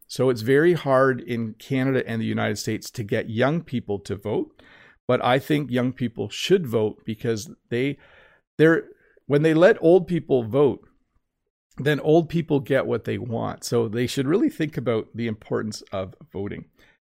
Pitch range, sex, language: 115-145 Hz, male, English